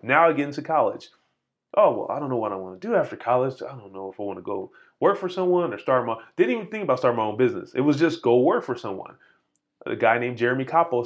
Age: 20-39